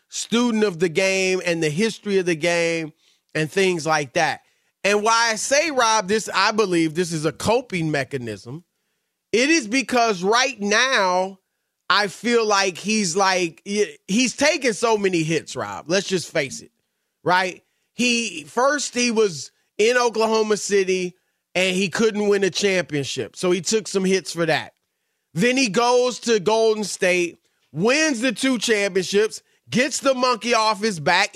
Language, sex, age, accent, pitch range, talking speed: English, male, 30-49, American, 185-245 Hz, 160 wpm